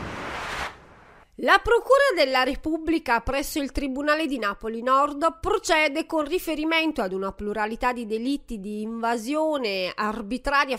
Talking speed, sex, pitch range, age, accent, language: 115 wpm, female, 235-330 Hz, 30-49, native, Italian